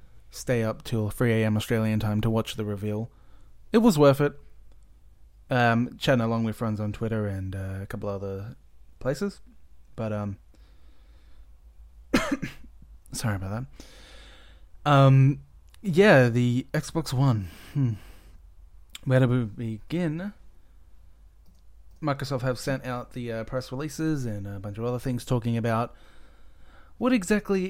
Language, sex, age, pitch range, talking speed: English, male, 20-39, 100-135 Hz, 130 wpm